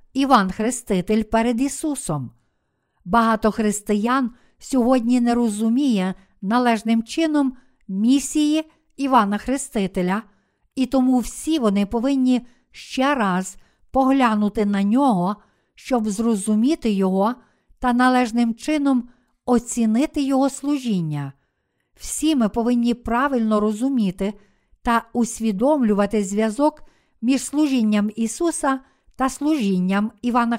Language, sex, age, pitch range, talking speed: Ukrainian, female, 50-69, 215-265 Hz, 90 wpm